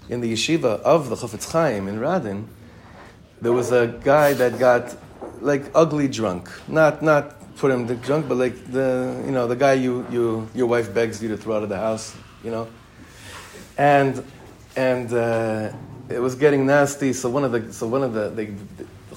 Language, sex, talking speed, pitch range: English, male, 190 wpm, 105-130 Hz